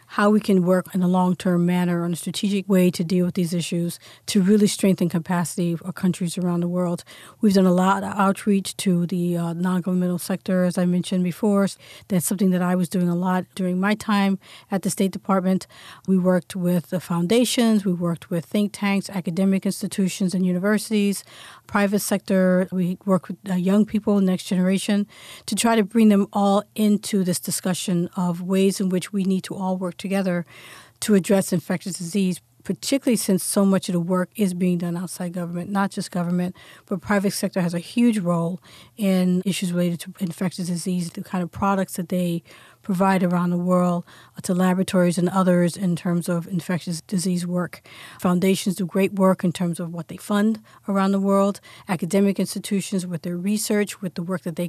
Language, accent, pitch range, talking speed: English, American, 175-195 Hz, 190 wpm